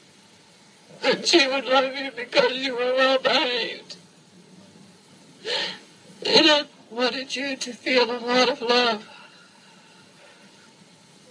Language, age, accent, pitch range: English, 60-79, American, 200-230 Hz